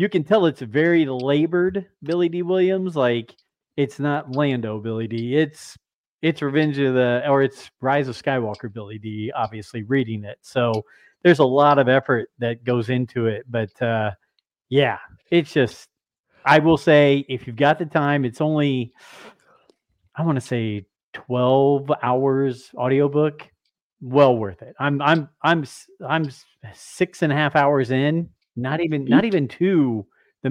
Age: 40-59